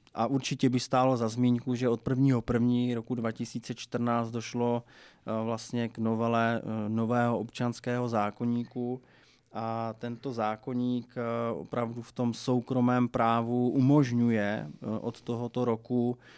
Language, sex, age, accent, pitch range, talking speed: Czech, male, 20-39, native, 115-125 Hz, 115 wpm